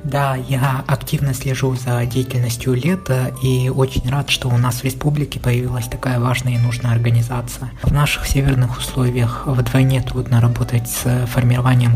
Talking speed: 150 wpm